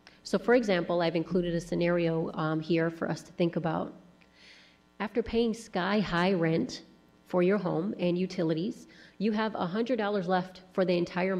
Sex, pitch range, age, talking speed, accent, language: female, 165-200 Hz, 30-49, 160 wpm, American, English